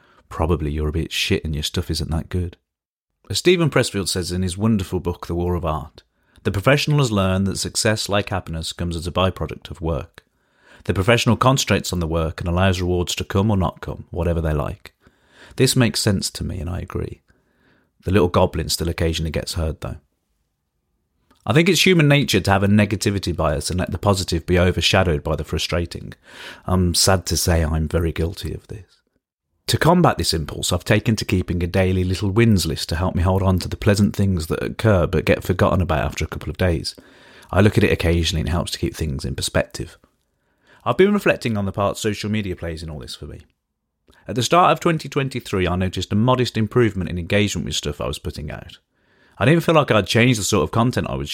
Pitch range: 80-105 Hz